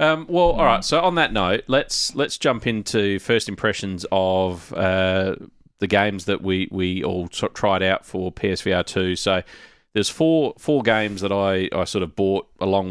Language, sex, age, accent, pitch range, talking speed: English, male, 30-49, Australian, 95-105 Hz, 180 wpm